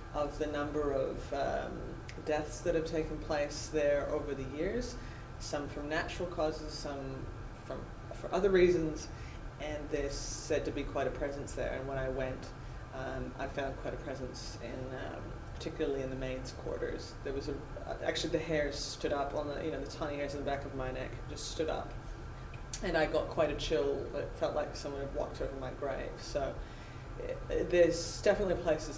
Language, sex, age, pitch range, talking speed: English, female, 20-39, 130-155 Hz, 195 wpm